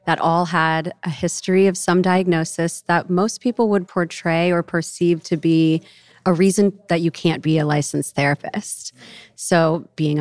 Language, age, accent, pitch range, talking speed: English, 30-49, American, 160-190 Hz, 165 wpm